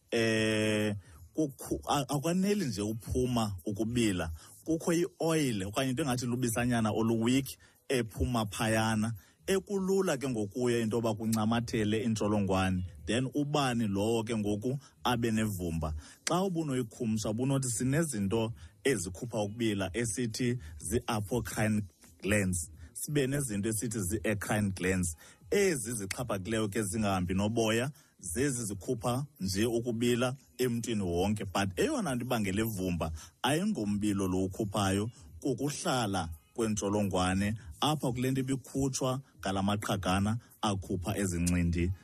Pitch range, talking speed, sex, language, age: 100-125 Hz, 110 wpm, male, English, 30-49